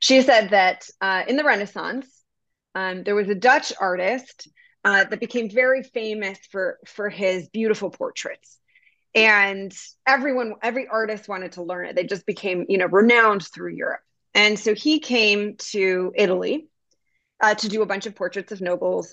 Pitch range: 185-235 Hz